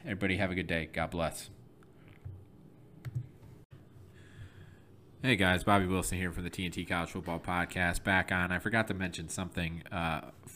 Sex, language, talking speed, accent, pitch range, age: male, English, 150 wpm, American, 90-110 Hz, 30-49